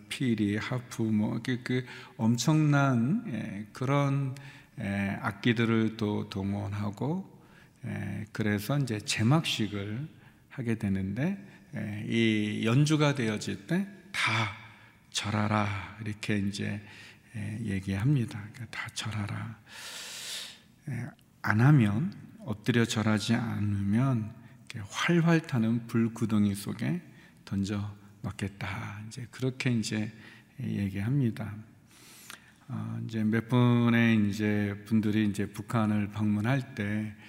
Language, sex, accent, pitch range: Korean, male, native, 105-115 Hz